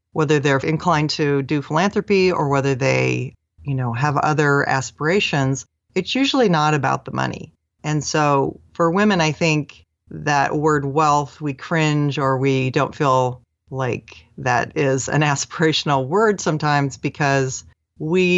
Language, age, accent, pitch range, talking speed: English, 30-49, American, 130-160 Hz, 145 wpm